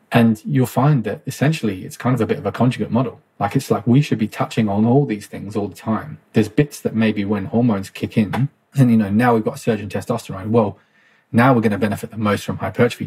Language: English